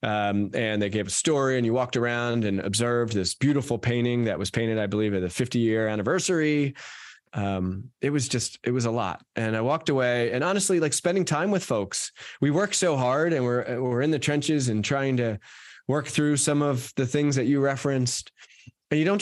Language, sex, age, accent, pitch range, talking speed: English, male, 20-39, American, 105-140 Hz, 215 wpm